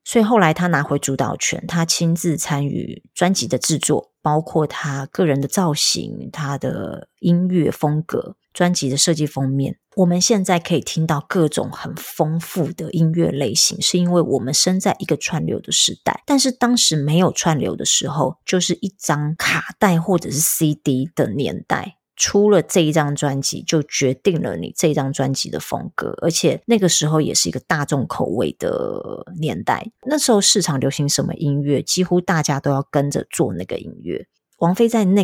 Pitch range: 145-185 Hz